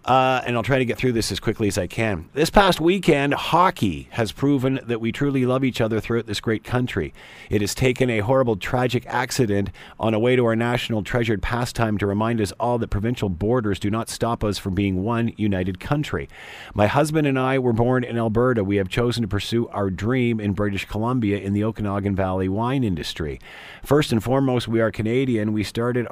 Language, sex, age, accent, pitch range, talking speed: English, male, 40-59, American, 95-115 Hz, 210 wpm